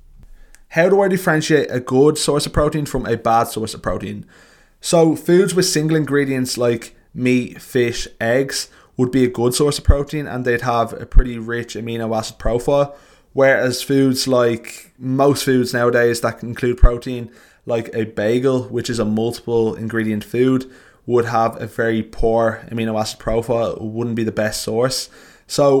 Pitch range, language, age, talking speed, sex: 110-135 Hz, English, 20-39, 165 wpm, male